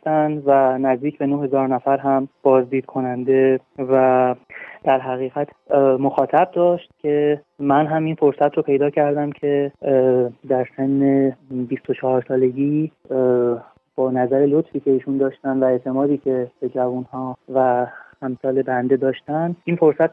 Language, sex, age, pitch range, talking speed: Persian, male, 30-49, 130-145 Hz, 130 wpm